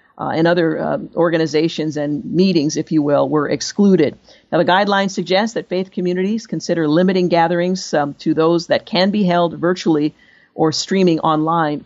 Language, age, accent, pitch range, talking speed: English, 50-69, American, 155-190 Hz, 165 wpm